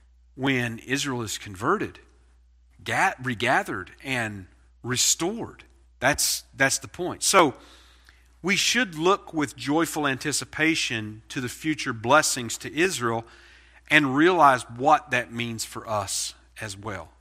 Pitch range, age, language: 95-140 Hz, 50-69, English